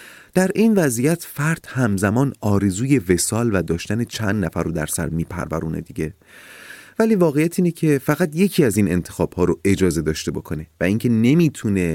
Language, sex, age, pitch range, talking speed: Persian, male, 30-49, 90-130 Hz, 160 wpm